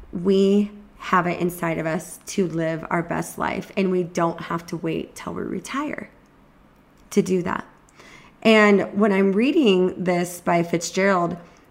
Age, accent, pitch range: 20-39, American, 170-215 Hz